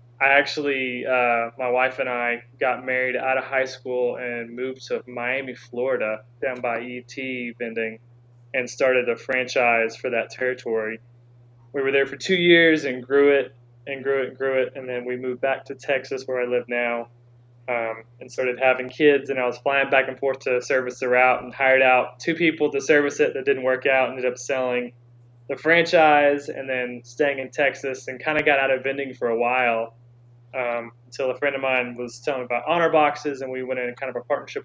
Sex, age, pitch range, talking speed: male, 20-39, 120-135 Hz, 215 wpm